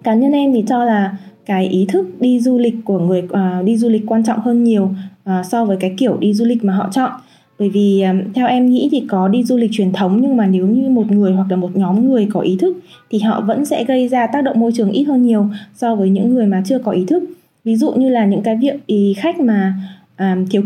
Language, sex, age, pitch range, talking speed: Vietnamese, female, 20-39, 195-235 Hz, 275 wpm